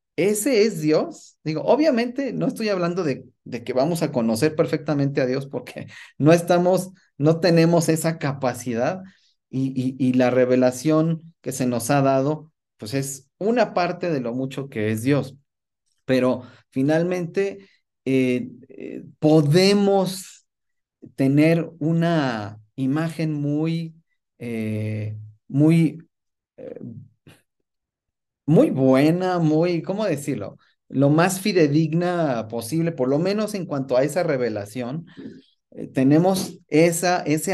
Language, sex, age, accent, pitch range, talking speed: Spanish, male, 30-49, Mexican, 125-165 Hz, 120 wpm